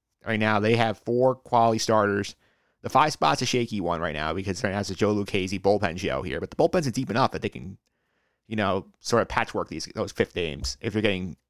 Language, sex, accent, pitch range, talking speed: English, male, American, 100-120 Hz, 235 wpm